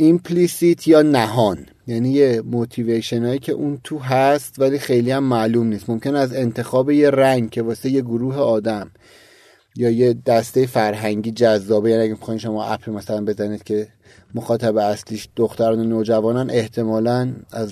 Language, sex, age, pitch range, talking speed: Persian, male, 30-49, 110-130 Hz, 150 wpm